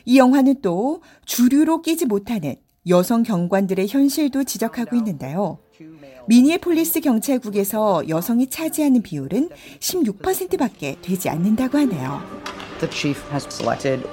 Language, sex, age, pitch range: Korean, female, 40-59, 170-280 Hz